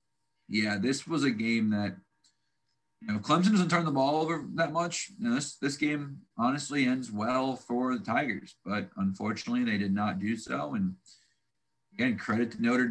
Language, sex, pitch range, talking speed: English, male, 105-160 Hz, 180 wpm